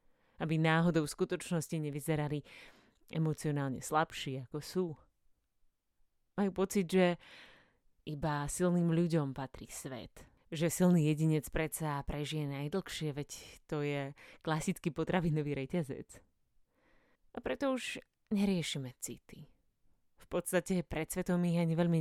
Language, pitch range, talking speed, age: Slovak, 150-185 Hz, 110 wpm, 30-49